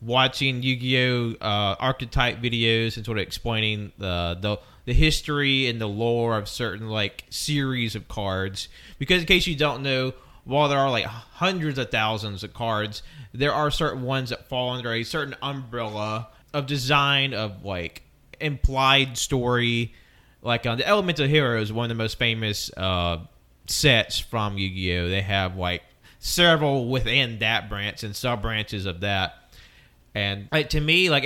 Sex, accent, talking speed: male, American, 155 wpm